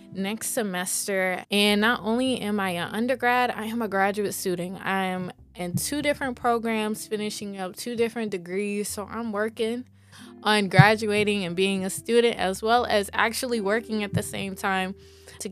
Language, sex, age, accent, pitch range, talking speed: English, female, 20-39, American, 185-235 Hz, 170 wpm